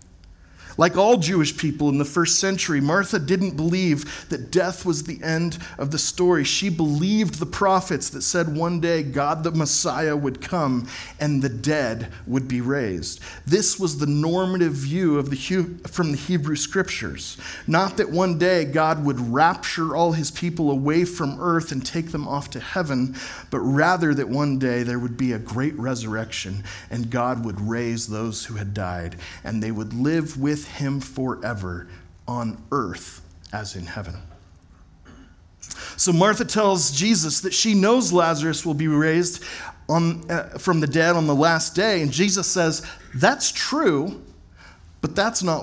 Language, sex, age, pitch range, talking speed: English, male, 40-59, 120-170 Hz, 165 wpm